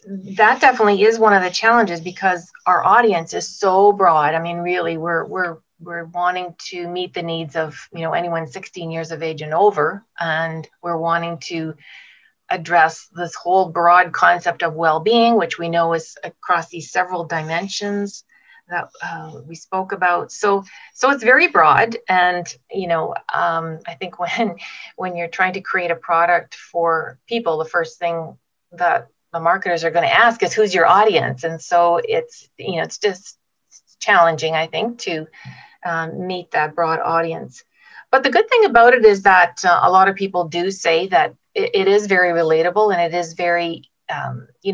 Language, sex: English, female